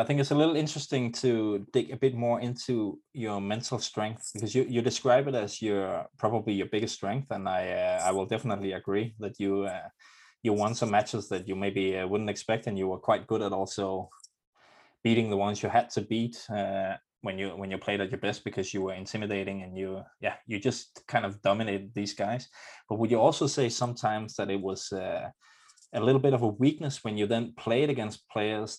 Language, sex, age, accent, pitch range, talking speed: English, male, 20-39, Danish, 100-120 Hz, 220 wpm